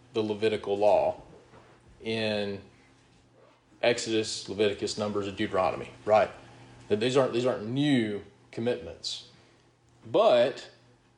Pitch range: 105-130 Hz